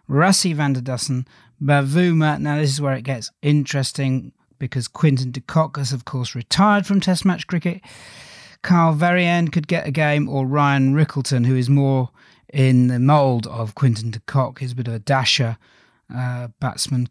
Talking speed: 180 wpm